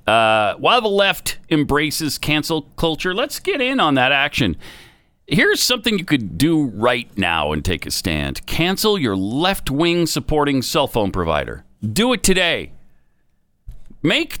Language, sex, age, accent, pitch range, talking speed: English, male, 40-59, American, 105-165 Hz, 145 wpm